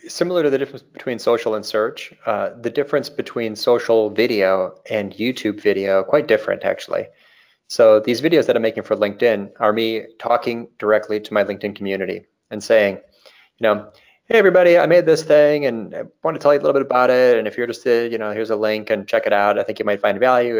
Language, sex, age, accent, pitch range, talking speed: English, male, 30-49, American, 105-140 Hz, 220 wpm